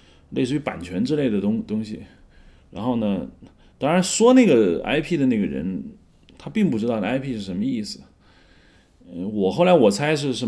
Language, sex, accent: Chinese, male, native